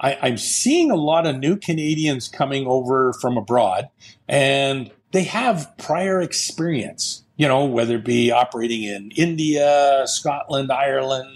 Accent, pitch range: American, 130-175 Hz